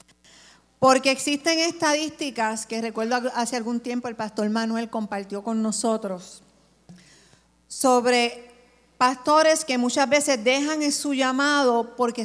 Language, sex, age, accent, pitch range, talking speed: Spanish, female, 50-69, American, 215-275 Hz, 120 wpm